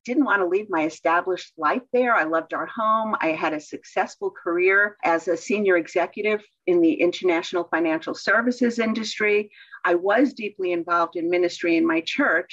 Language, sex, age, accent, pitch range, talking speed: English, female, 50-69, American, 180-265 Hz, 170 wpm